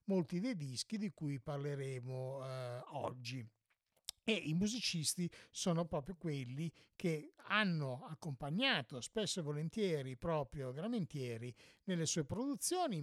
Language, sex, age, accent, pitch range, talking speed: English, male, 50-69, Italian, 135-180 Hz, 115 wpm